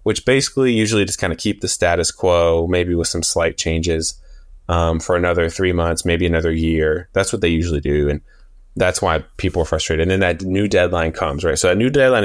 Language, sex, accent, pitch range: English, male, American, 80-105 Hz